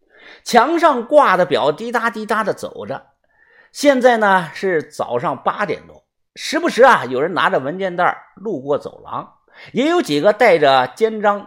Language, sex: Chinese, male